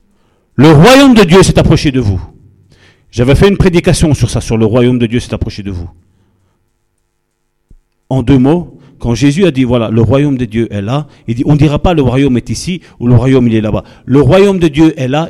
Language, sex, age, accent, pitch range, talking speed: French, male, 50-69, French, 125-195 Hz, 230 wpm